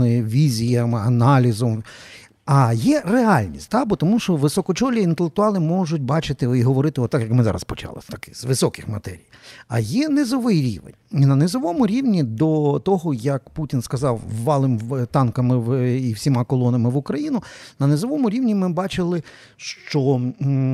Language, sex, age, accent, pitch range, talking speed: Ukrainian, male, 50-69, native, 125-175 Hz, 140 wpm